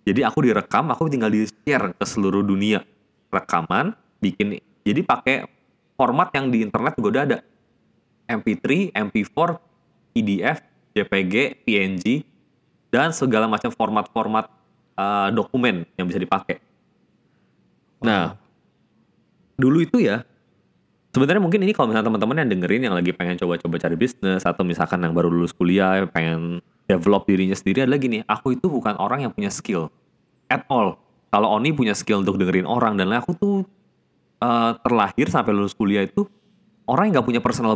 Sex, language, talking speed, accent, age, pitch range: male, Indonesian, 150 wpm, native, 20-39, 95-130 Hz